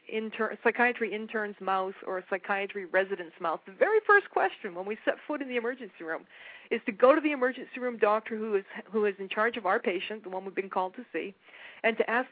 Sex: female